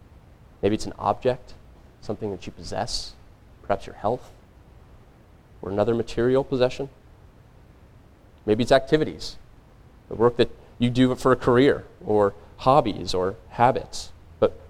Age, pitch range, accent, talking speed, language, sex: 30-49, 105-130 Hz, American, 125 wpm, English, male